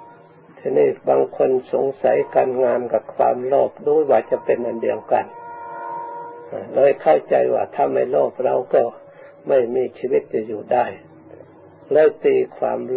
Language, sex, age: Thai, male, 60-79